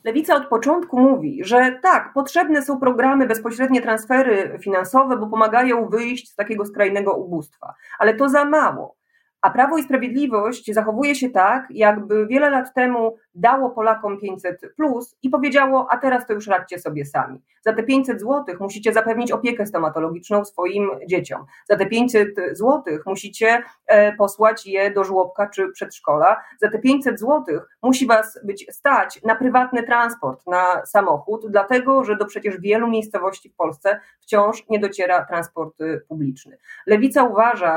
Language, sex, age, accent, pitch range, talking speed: Polish, female, 30-49, native, 180-245 Hz, 155 wpm